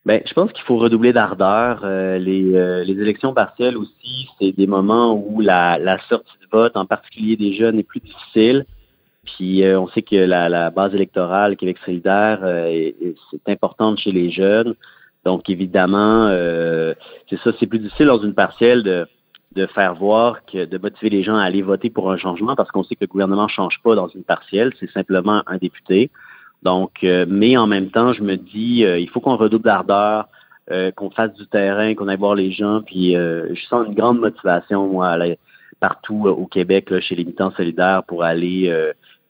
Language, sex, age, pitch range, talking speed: French, male, 30-49, 90-110 Hz, 210 wpm